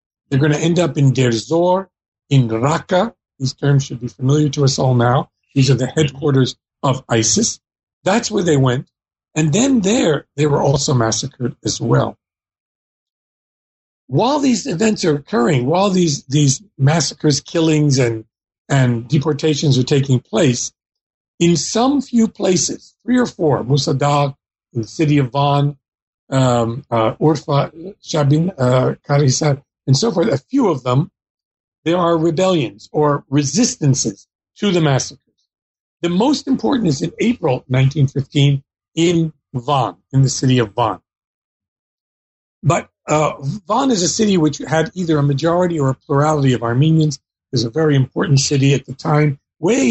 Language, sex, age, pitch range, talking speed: English, male, 50-69, 130-165 Hz, 155 wpm